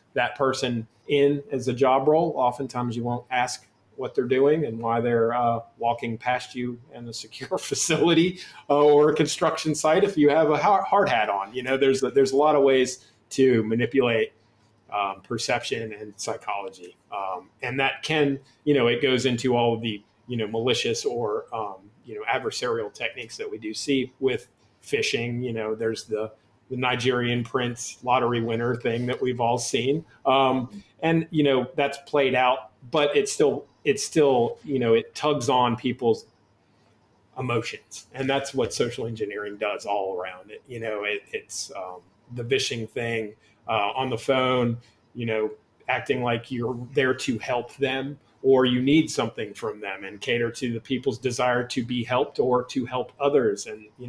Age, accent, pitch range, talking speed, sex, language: 30-49, American, 115-140 Hz, 180 wpm, male, English